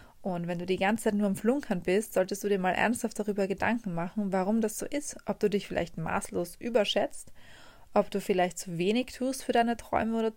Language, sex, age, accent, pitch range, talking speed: German, female, 20-39, German, 195-230 Hz, 220 wpm